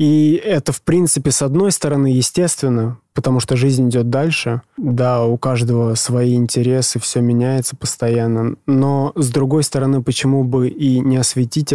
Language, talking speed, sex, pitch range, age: Russian, 155 wpm, male, 120-140 Hz, 20-39